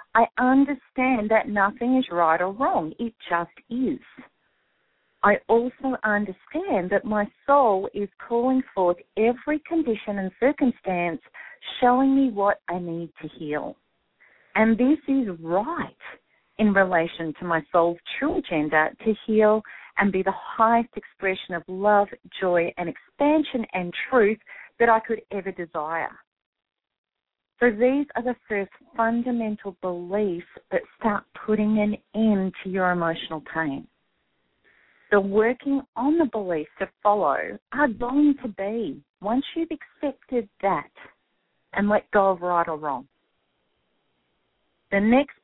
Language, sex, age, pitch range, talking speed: English, female, 40-59, 185-245 Hz, 135 wpm